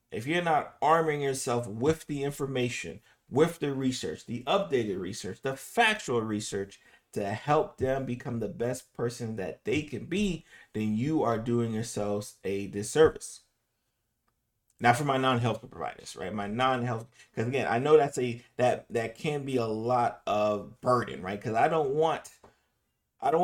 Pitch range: 110-130 Hz